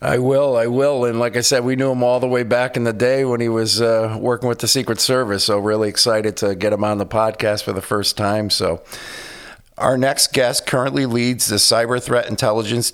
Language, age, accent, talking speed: English, 50-69, American, 230 wpm